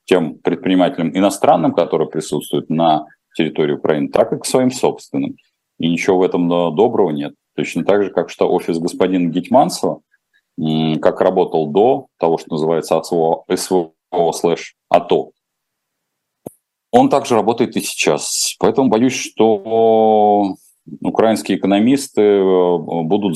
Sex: male